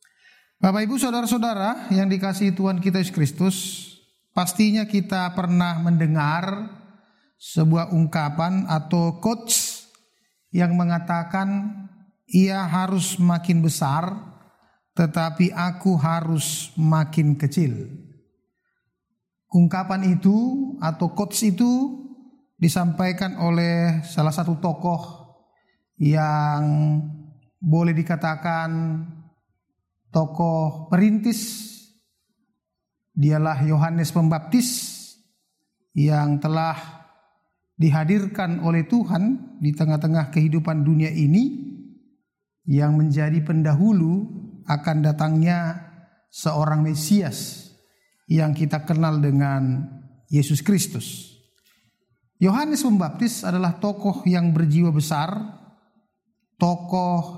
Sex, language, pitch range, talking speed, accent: male, Indonesian, 160-200 Hz, 80 wpm, native